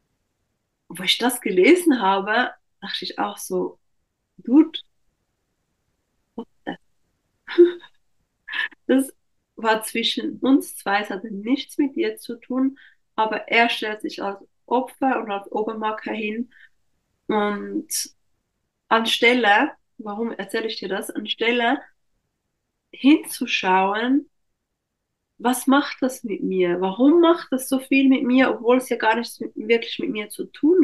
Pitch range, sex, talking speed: 205-275 Hz, female, 125 wpm